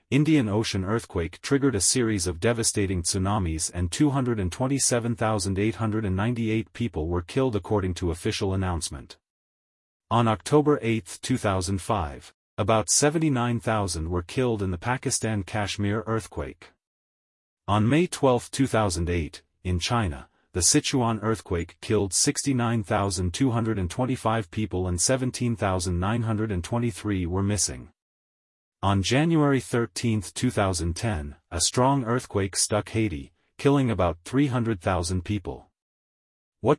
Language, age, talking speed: English, 40-59, 100 wpm